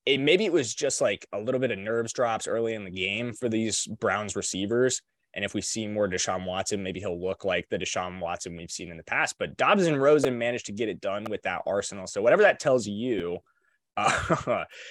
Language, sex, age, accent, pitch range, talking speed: English, male, 20-39, American, 95-135 Hz, 230 wpm